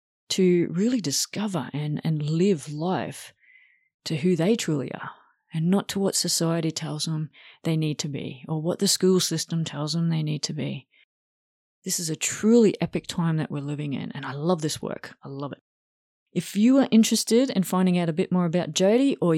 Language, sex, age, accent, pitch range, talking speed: English, female, 30-49, Australian, 155-195 Hz, 200 wpm